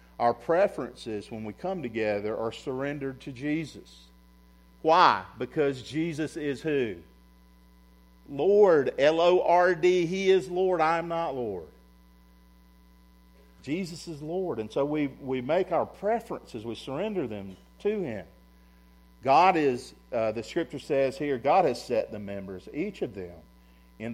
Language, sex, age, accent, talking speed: English, male, 50-69, American, 135 wpm